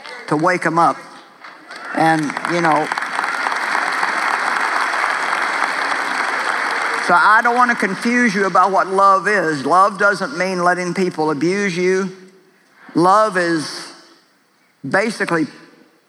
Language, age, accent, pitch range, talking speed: English, 50-69, American, 170-210 Hz, 105 wpm